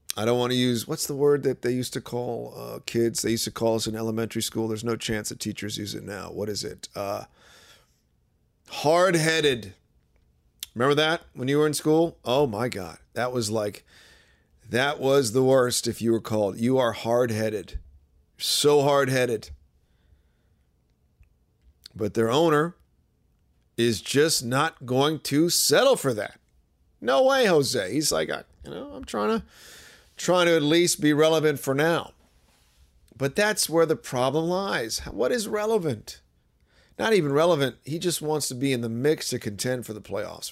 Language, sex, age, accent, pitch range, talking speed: English, male, 40-59, American, 95-145 Hz, 170 wpm